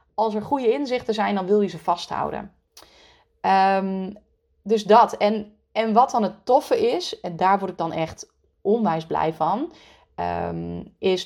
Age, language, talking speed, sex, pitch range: 30-49, Dutch, 155 wpm, female, 175-240 Hz